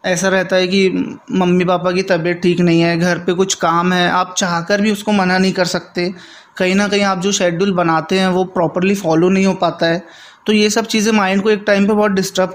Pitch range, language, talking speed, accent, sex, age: 180-200 Hz, Hindi, 240 wpm, native, male, 20-39